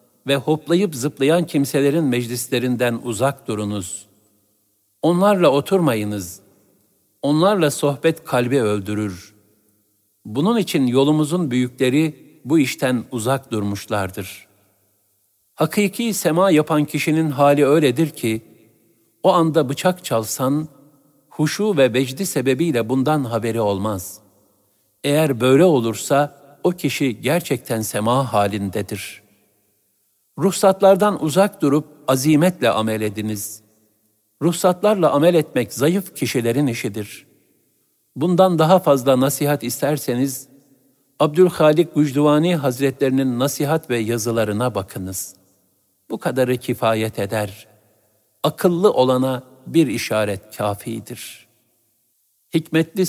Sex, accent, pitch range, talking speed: male, native, 105-150 Hz, 90 wpm